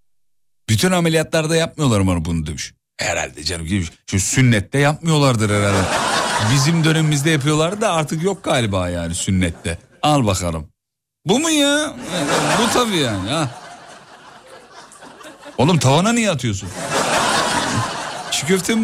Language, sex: Turkish, male